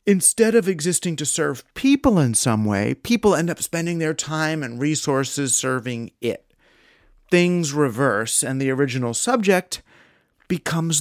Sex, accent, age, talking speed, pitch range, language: male, American, 40-59, 140 wpm, 115-150 Hz, English